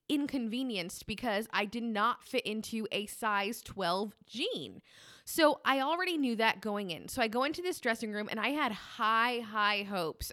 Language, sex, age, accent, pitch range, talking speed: English, female, 20-39, American, 195-245 Hz, 180 wpm